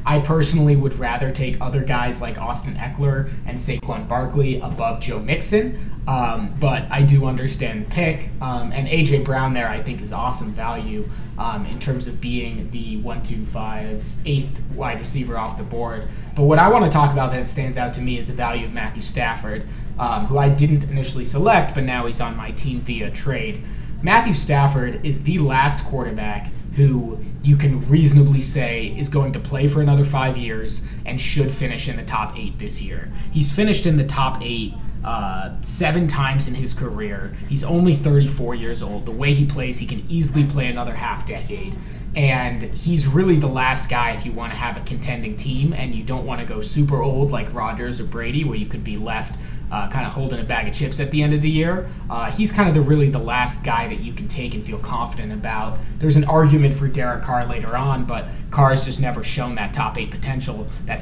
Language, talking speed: English, 210 wpm